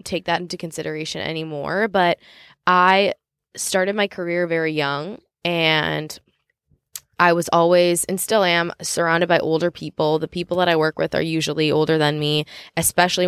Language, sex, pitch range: English, female, 160-185 Hz